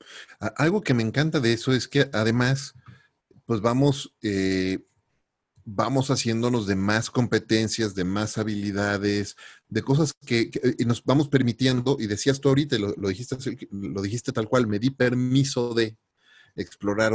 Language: Spanish